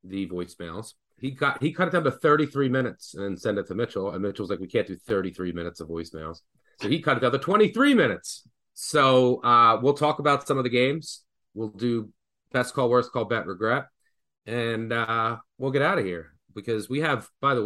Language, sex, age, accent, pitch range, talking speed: English, male, 30-49, American, 95-125 Hz, 220 wpm